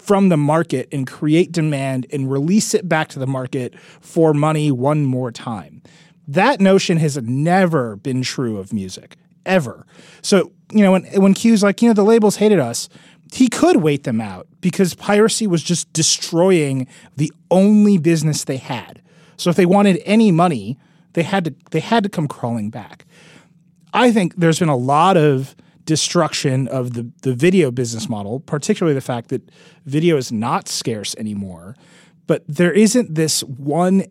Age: 30-49